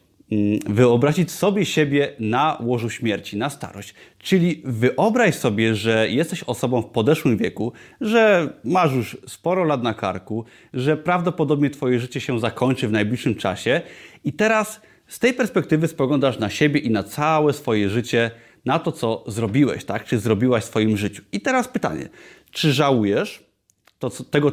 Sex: male